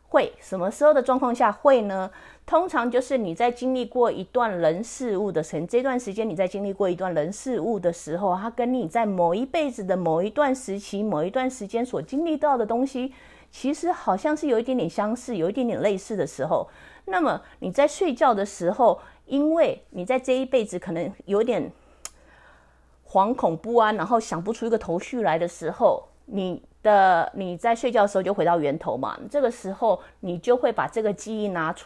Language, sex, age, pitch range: English, female, 30-49, 185-250 Hz